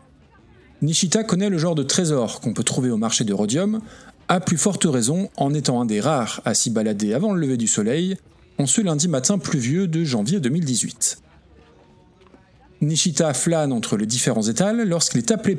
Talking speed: 180 wpm